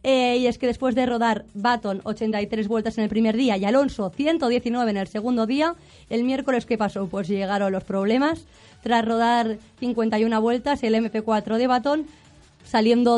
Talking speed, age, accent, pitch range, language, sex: 175 wpm, 20-39, Spanish, 210-245 Hz, Spanish, female